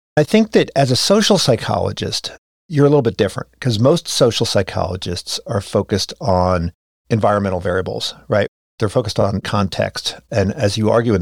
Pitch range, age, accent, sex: 100-140 Hz, 50-69, American, male